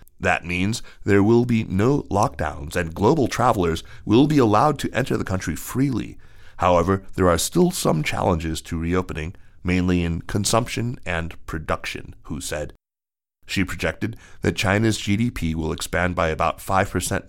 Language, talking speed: English, 150 wpm